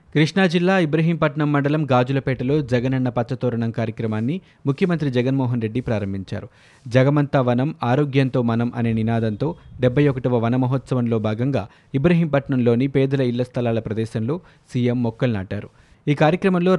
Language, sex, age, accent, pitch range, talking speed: Telugu, male, 20-39, native, 120-145 Hz, 120 wpm